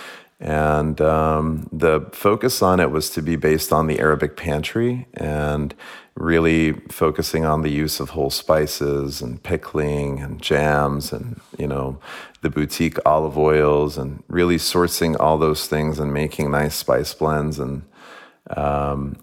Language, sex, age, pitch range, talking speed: English, male, 40-59, 70-80 Hz, 145 wpm